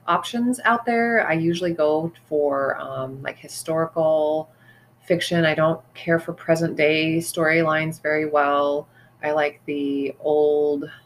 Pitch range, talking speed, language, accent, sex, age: 140-170 Hz, 130 wpm, English, American, female, 30-49